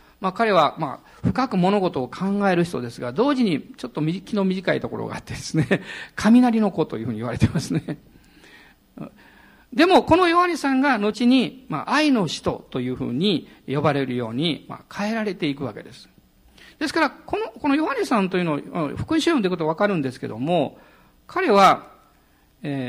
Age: 50-69